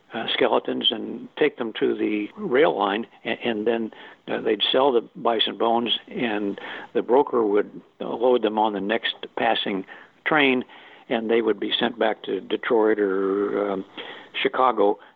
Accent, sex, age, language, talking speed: American, male, 60-79, English, 160 wpm